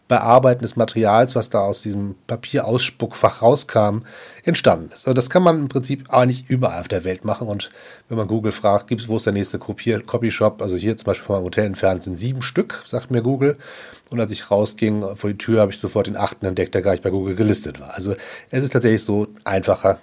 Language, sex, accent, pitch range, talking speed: German, male, German, 105-140 Hz, 230 wpm